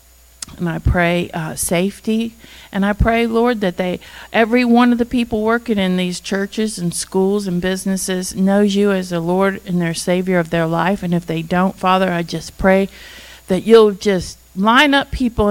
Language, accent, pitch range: English, American, 175-205 Hz